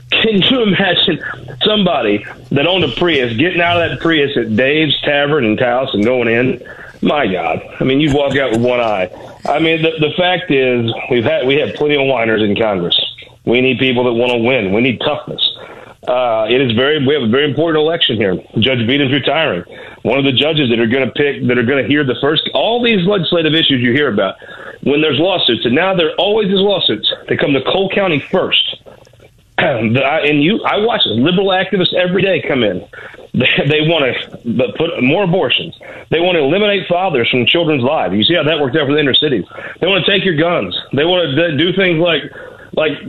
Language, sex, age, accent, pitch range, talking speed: English, male, 40-59, American, 130-180 Hz, 215 wpm